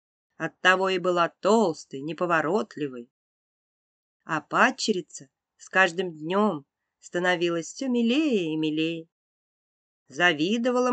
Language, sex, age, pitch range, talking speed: Russian, female, 30-49, 165-230 Hz, 90 wpm